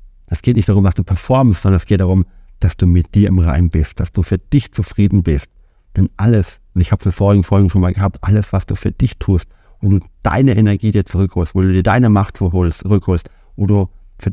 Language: German